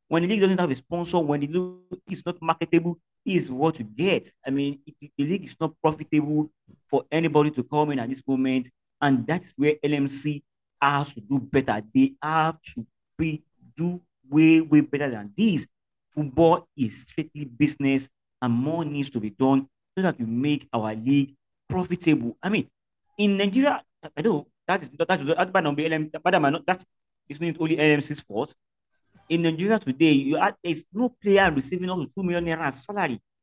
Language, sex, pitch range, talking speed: English, male, 135-175 Hz, 165 wpm